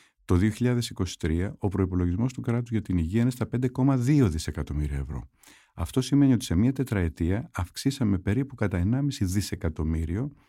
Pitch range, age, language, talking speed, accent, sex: 85-115 Hz, 50-69, Greek, 145 wpm, native, male